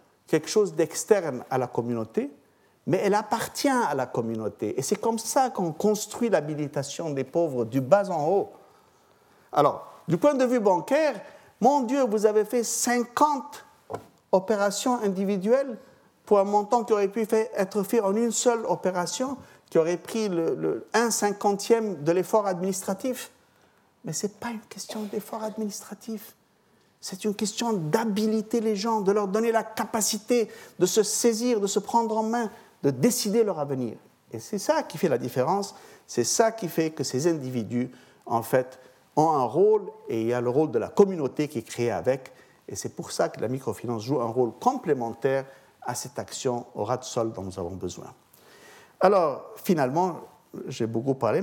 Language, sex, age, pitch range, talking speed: French, male, 50-69, 140-225 Hz, 175 wpm